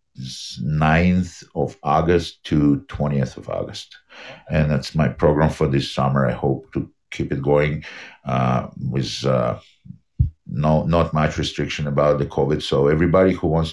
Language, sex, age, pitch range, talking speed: English, male, 50-69, 70-80 Hz, 150 wpm